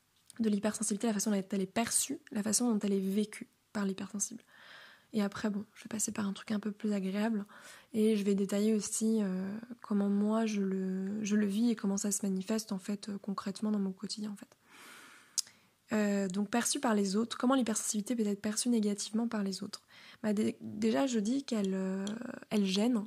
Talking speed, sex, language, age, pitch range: 205 wpm, female, French, 20-39, 200-230 Hz